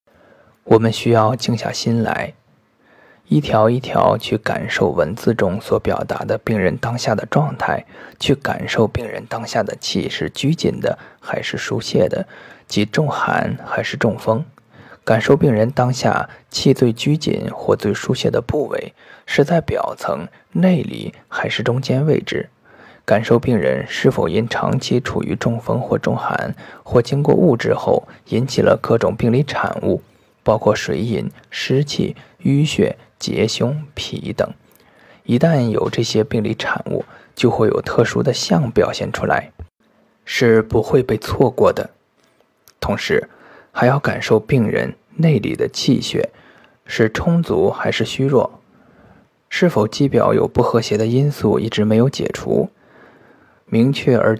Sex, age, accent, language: male, 20-39, native, Chinese